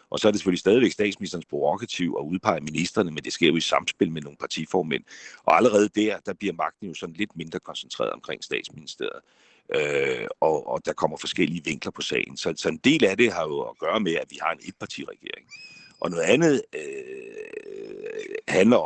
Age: 60-79